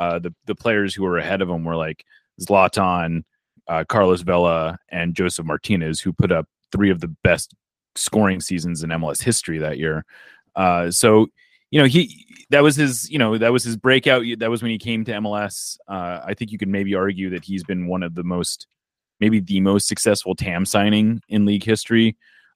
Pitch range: 100-145 Hz